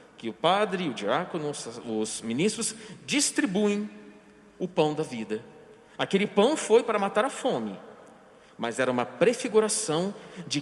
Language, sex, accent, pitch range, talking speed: Portuguese, male, Brazilian, 145-215 Hz, 135 wpm